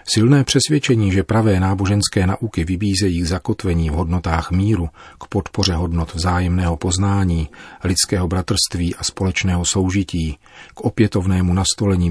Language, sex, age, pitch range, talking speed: Czech, male, 40-59, 90-100 Hz, 120 wpm